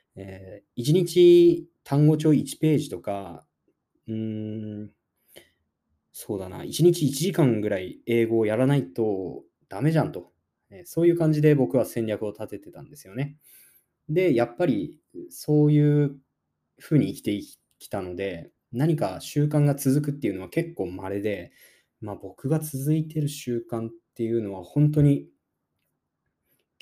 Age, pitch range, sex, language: 20-39, 105-150 Hz, male, Japanese